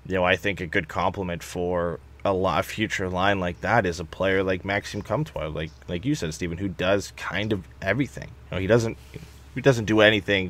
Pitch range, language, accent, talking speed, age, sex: 85-95 Hz, English, American, 215 wpm, 20-39, male